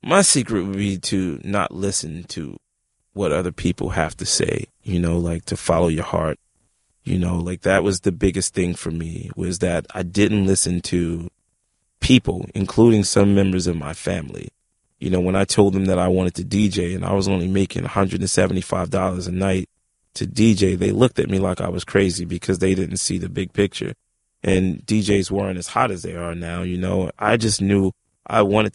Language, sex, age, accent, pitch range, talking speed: English, male, 30-49, American, 90-105 Hz, 200 wpm